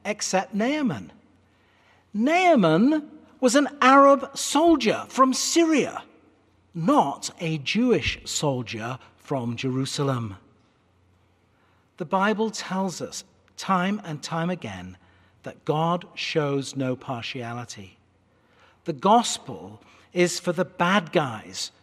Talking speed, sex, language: 95 wpm, male, English